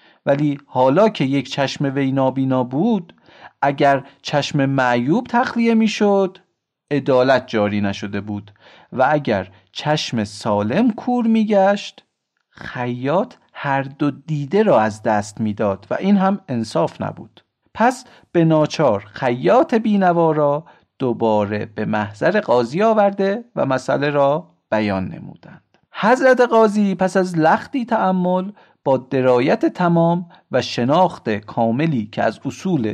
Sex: male